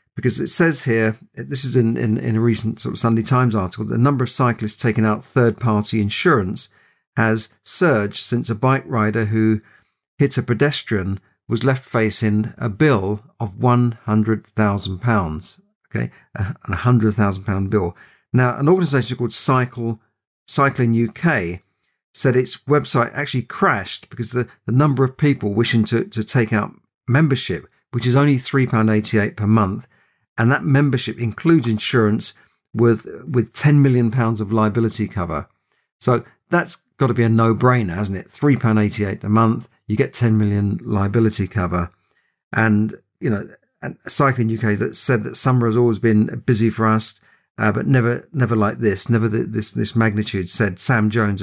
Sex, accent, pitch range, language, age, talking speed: male, British, 105-125 Hz, English, 50-69, 165 wpm